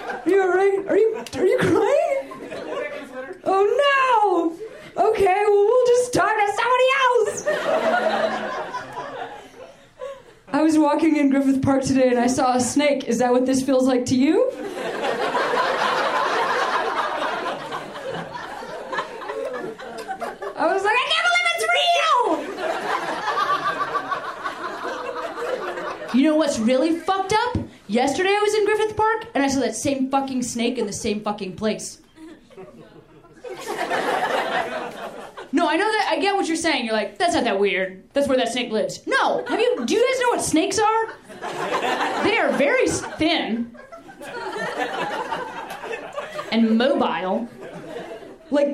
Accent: American